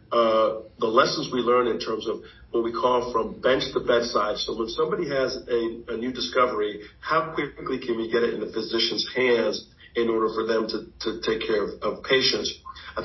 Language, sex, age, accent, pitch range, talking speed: English, male, 50-69, American, 115-130 Hz, 205 wpm